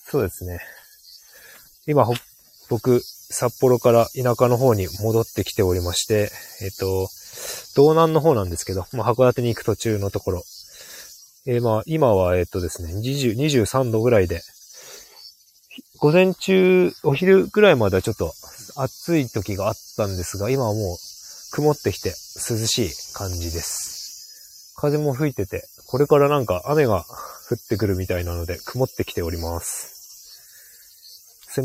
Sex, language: male, Japanese